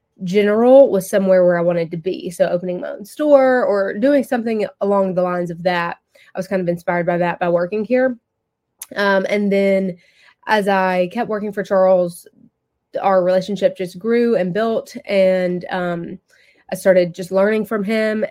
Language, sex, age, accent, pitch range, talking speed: English, female, 20-39, American, 180-200 Hz, 175 wpm